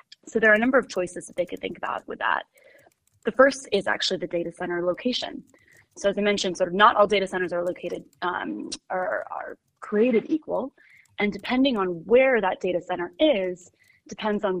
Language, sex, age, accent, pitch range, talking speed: English, female, 20-39, American, 175-220 Hz, 200 wpm